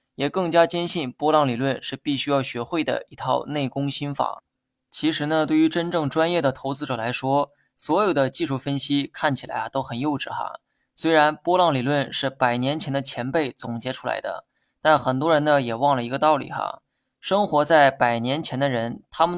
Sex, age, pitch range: male, 20-39, 130-155 Hz